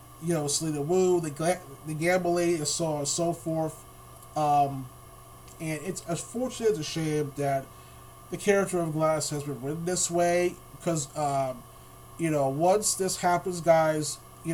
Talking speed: 155 wpm